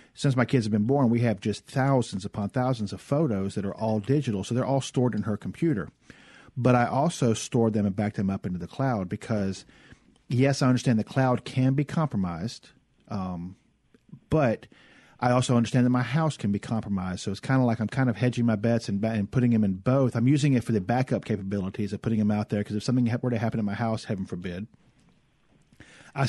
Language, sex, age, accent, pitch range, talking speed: English, male, 40-59, American, 105-130 Hz, 225 wpm